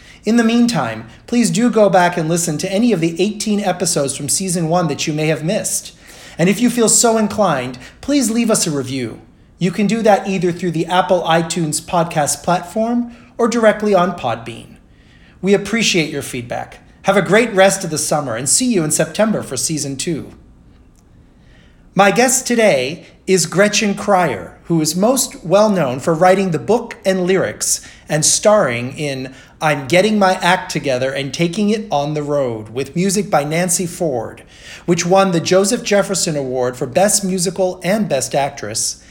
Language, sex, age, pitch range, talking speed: English, male, 30-49, 145-210 Hz, 175 wpm